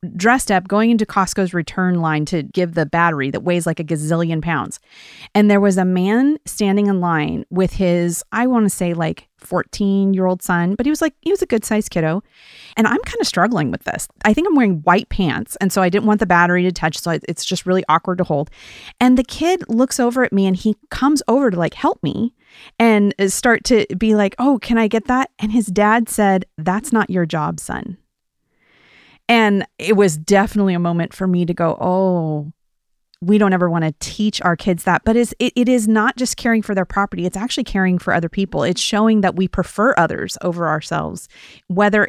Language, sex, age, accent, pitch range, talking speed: English, female, 30-49, American, 175-220 Hz, 220 wpm